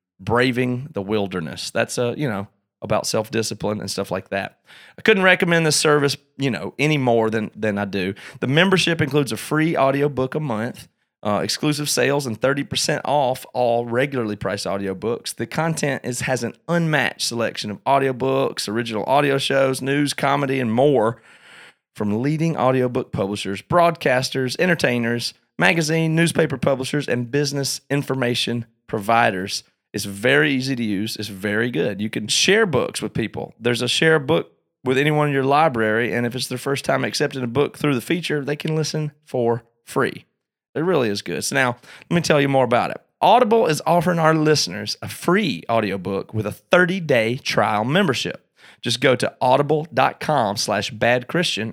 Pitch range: 115-150 Hz